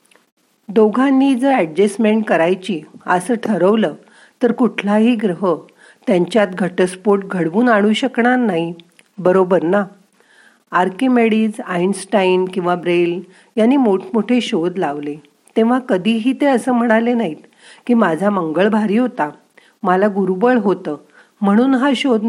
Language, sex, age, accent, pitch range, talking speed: Marathi, female, 50-69, native, 175-235 Hz, 115 wpm